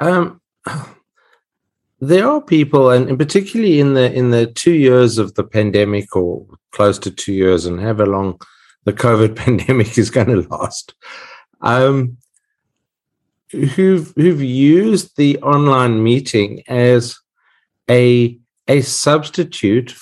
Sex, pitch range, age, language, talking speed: male, 100-130 Hz, 50-69, English, 125 wpm